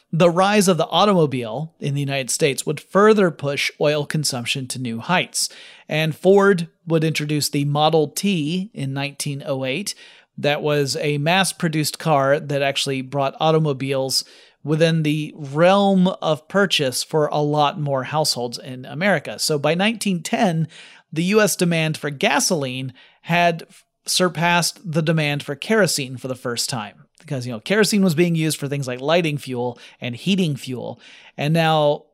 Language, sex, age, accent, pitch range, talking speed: English, male, 30-49, American, 140-185 Hz, 155 wpm